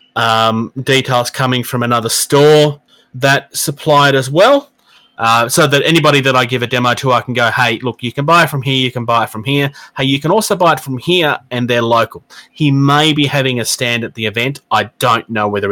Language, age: English, 30-49